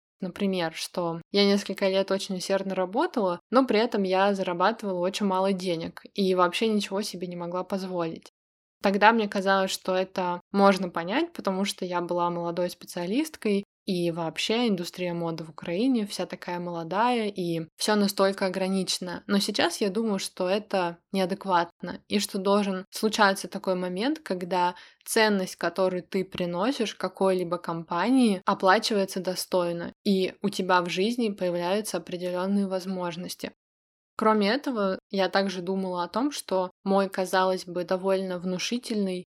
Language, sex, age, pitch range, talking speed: Russian, female, 20-39, 180-205 Hz, 140 wpm